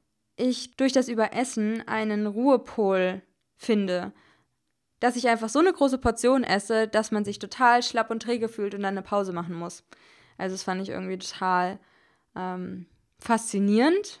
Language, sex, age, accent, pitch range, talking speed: German, female, 20-39, German, 195-230 Hz, 155 wpm